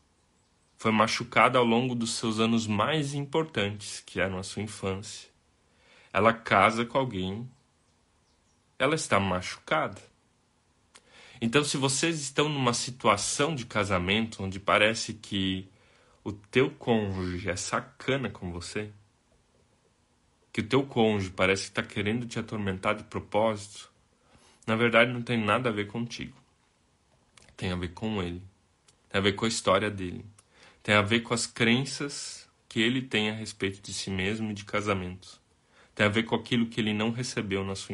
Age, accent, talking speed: 20-39, Brazilian, 155 wpm